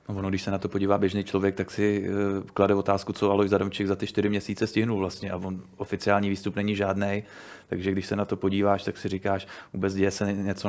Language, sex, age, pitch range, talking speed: Czech, male, 20-39, 100-105 Hz, 225 wpm